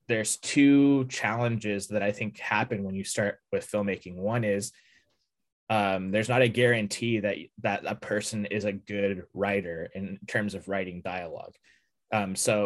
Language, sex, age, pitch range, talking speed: English, male, 20-39, 100-115 Hz, 160 wpm